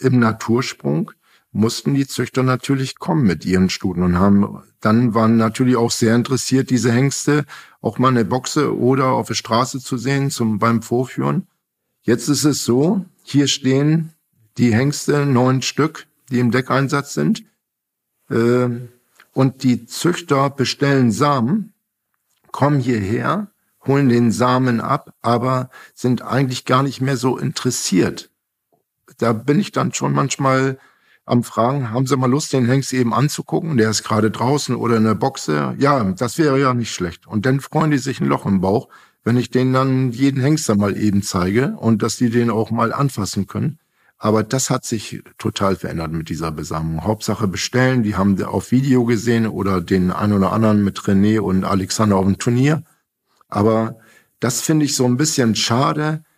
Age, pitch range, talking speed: 50-69, 110-135 Hz, 170 wpm